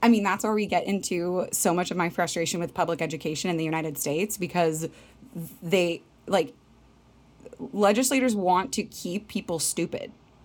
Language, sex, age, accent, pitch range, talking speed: English, female, 20-39, American, 165-190 Hz, 160 wpm